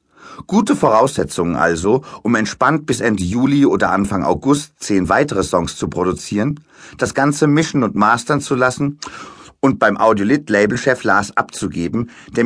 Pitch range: 105-135 Hz